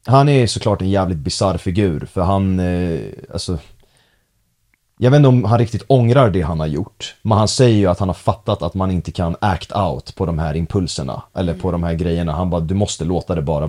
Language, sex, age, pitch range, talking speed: Swedish, male, 30-49, 85-110 Hz, 230 wpm